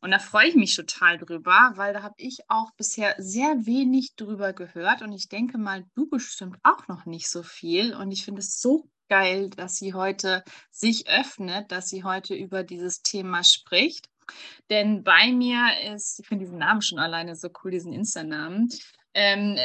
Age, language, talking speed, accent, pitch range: 20-39, German, 185 wpm, German, 175-220 Hz